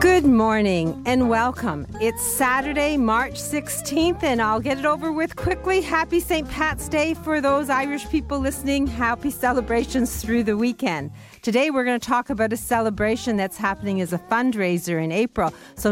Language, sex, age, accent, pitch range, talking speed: English, female, 40-59, American, 180-245 Hz, 170 wpm